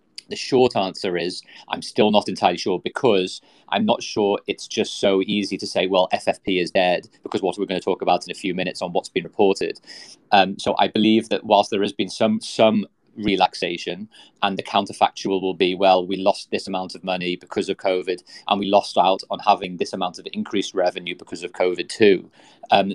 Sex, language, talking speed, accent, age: male, English, 215 wpm, British, 30-49